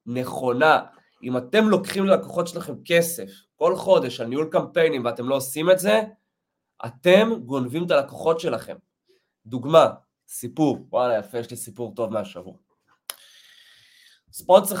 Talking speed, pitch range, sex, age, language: 130 wpm, 125-180 Hz, male, 20-39, Hebrew